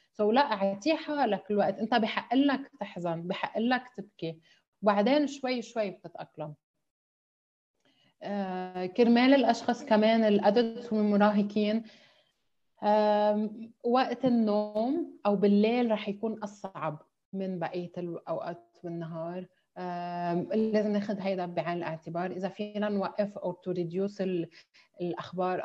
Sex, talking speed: female, 95 wpm